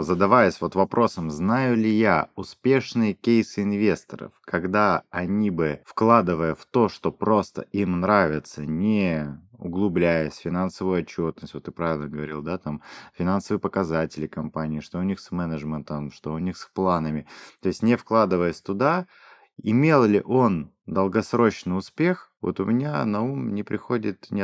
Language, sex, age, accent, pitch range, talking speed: Russian, male, 20-39, native, 85-115 Hz, 150 wpm